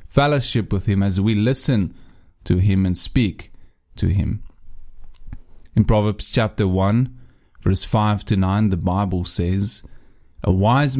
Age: 30-49